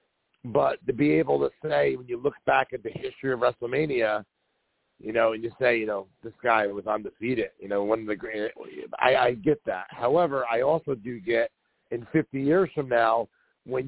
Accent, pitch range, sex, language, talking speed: American, 115-145 Hz, male, English, 205 wpm